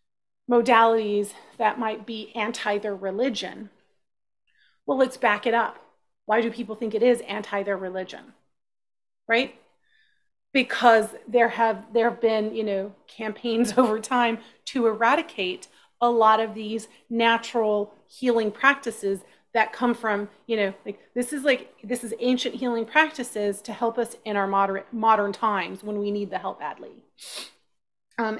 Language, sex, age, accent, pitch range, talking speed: English, female, 30-49, American, 215-245 Hz, 150 wpm